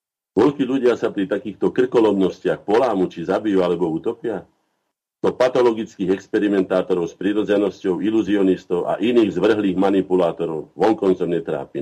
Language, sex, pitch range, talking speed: Slovak, male, 90-105 Hz, 115 wpm